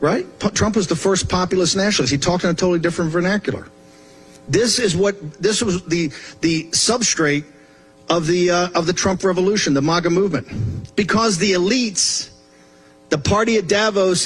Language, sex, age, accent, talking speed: Swedish, male, 50-69, American, 165 wpm